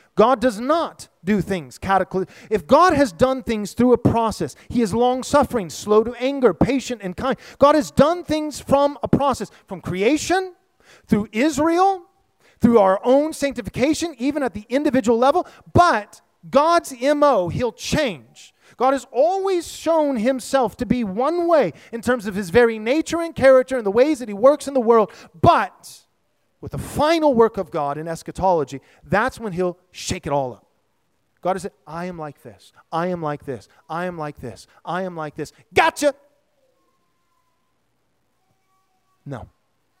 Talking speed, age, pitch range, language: 165 wpm, 30-49, 180-270 Hz, English